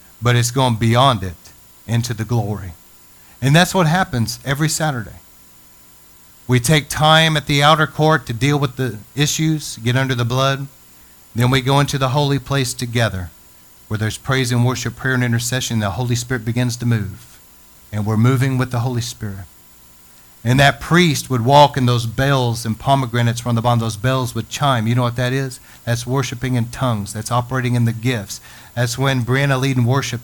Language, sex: English, male